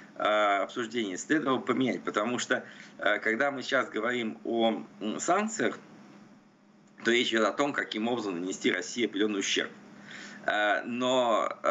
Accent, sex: native, male